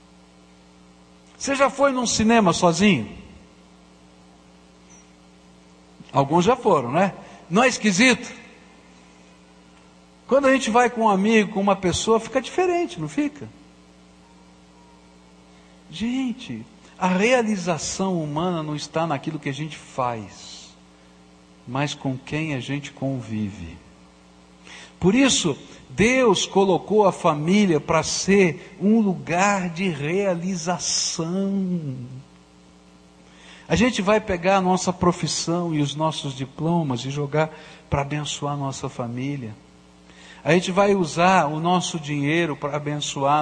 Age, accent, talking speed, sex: 60-79, Brazilian, 115 wpm, male